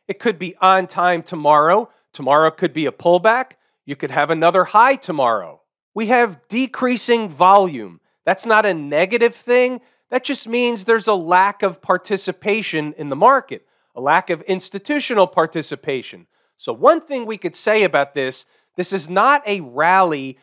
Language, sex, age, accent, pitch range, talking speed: English, male, 40-59, American, 170-215 Hz, 160 wpm